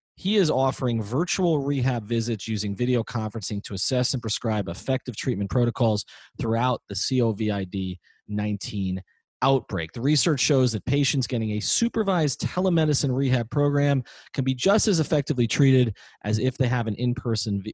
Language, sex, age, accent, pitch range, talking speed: English, male, 30-49, American, 110-145 Hz, 150 wpm